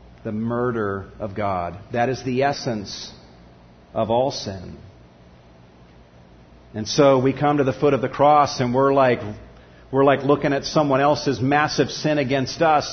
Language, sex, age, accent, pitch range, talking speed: English, male, 50-69, American, 110-150 Hz, 160 wpm